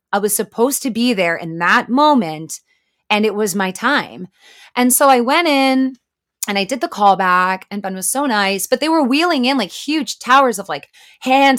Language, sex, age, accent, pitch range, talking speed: English, female, 30-49, American, 185-260 Hz, 205 wpm